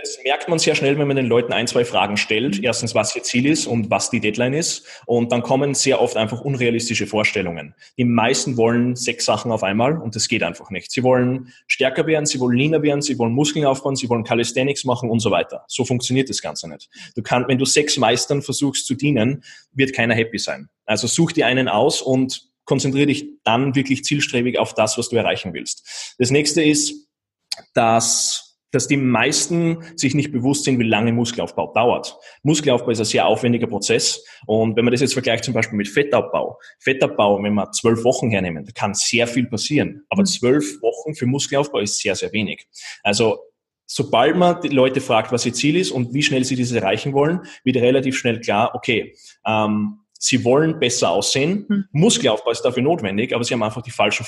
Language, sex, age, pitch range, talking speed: German, male, 20-39, 115-145 Hz, 205 wpm